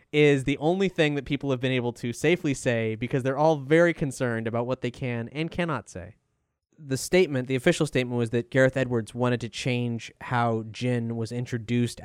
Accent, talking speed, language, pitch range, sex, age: American, 200 wpm, English, 120-145 Hz, male, 20-39